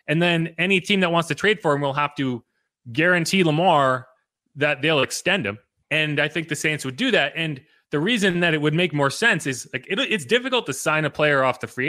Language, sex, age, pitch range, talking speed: English, male, 30-49, 130-175 Hz, 235 wpm